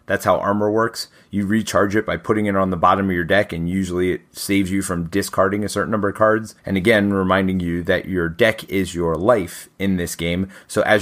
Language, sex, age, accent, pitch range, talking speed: English, male, 30-49, American, 90-110 Hz, 235 wpm